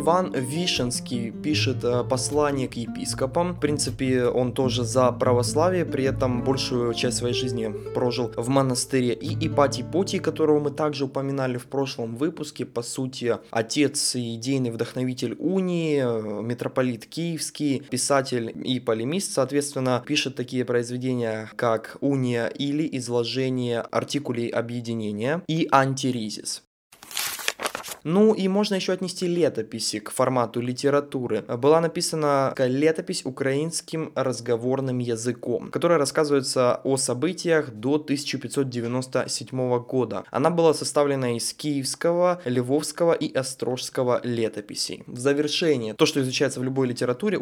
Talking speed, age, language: 120 wpm, 20-39, Russian